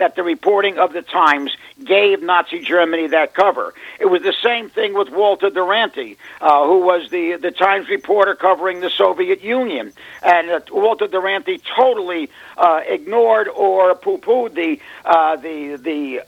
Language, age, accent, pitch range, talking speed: English, 60-79, American, 180-240 Hz, 160 wpm